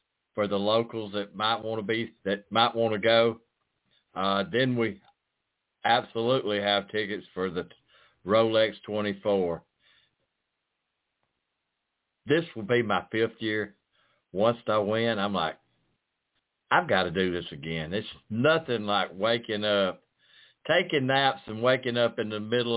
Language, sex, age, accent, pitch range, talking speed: English, male, 60-79, American, 95-115 Hz, 140 wpm